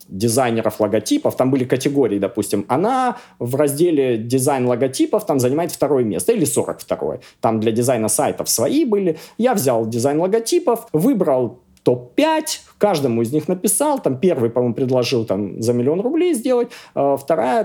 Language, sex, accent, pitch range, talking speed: Russian, male, native, 135-225 Hz, 150 wpm